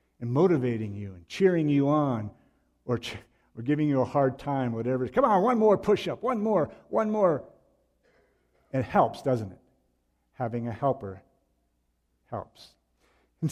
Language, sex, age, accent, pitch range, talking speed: English, male, 50-69, American, 100-140 Hz, 145 wpm